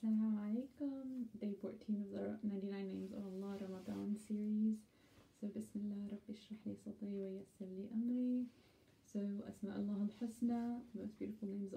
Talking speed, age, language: 140 wpm, 20-39, English